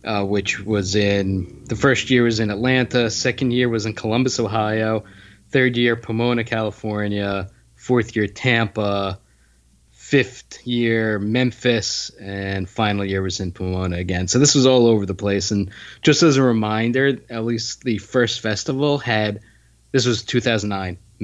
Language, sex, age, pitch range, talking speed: English, male, 20-39, 100-125 Hz, 155 wpm